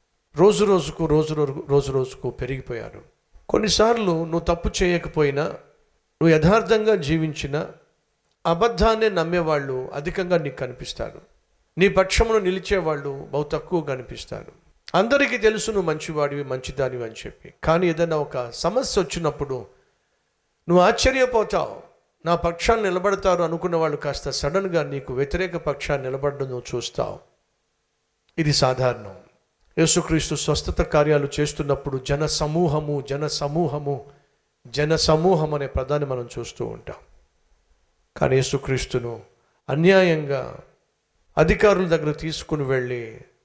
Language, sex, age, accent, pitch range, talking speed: Telugu, male, 50-69, native, 135-175 Hz, 105 wpm